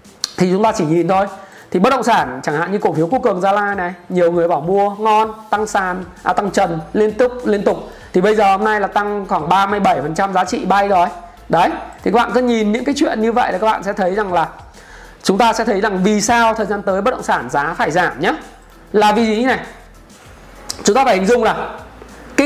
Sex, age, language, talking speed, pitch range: male, 20-39, Vietnamese, 250 wpm, 190-240 Hz